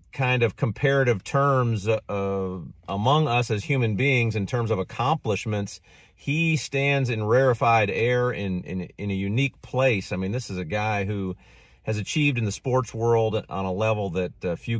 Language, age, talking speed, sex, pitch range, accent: English, 40-59, 180 wpm, male, 100-130 Hz, American